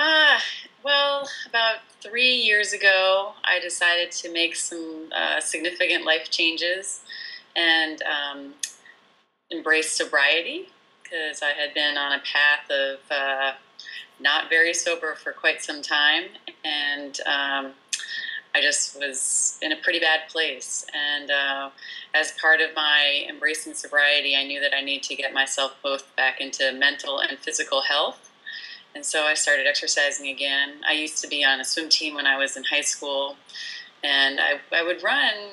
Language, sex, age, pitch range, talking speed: English, female, 30-49, 140-165 Hz, 155 wpm